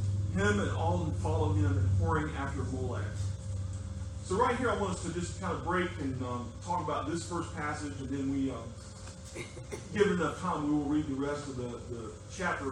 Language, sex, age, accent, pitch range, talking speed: English, male, 40-59, American, 125-185 Hz, 210 wpm